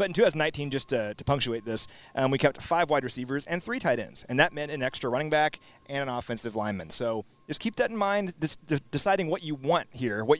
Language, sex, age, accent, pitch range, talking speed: English, male, 30-49, American, 125-165 Hz, 235 wpm